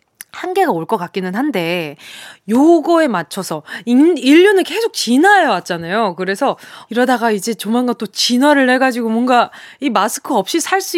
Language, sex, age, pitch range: Korean, female, 20-39, 210-315 Hz